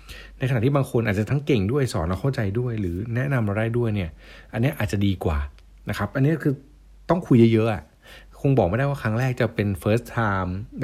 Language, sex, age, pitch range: Thai, male, 60-79, 95-130 Hz